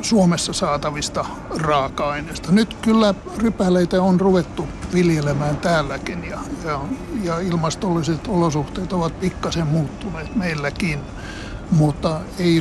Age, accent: 60-79, native